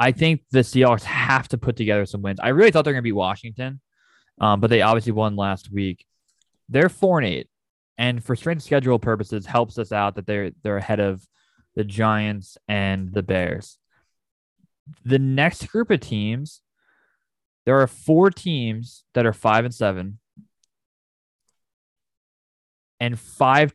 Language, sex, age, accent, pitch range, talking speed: English, male, 20-39, American, 105-135 Hz, 160 wpm